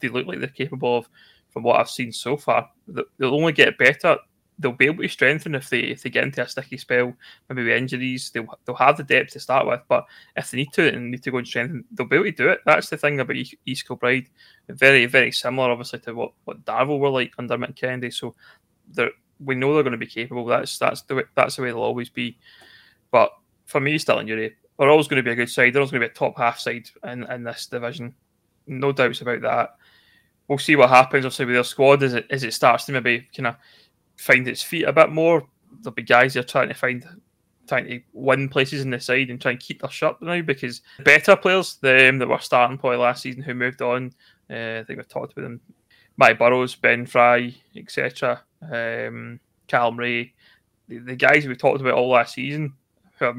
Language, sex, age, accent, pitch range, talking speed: English, male, 20-39, British, 120-135 Hz, 235 wpm